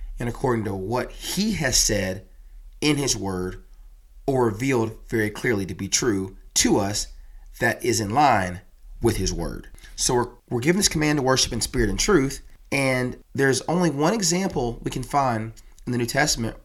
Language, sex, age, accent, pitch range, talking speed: English, male, 30-49, American, 100-135 Hz, 180 wpm